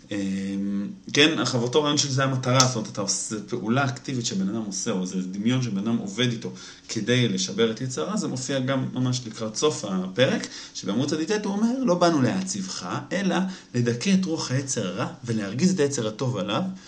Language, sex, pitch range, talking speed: Hebrew, male, 110-155 Hz, 180 wpm